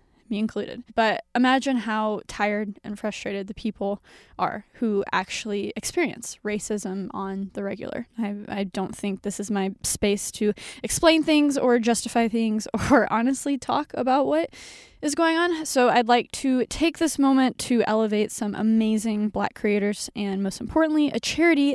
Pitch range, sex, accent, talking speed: 210-260 Hz, female, American, 160 wpm